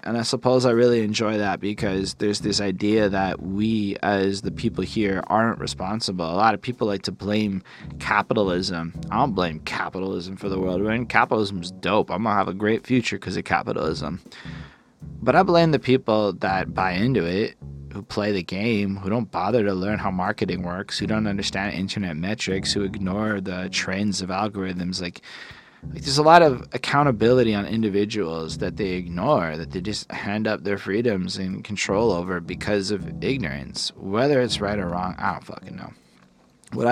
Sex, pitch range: male, 95-110 Hz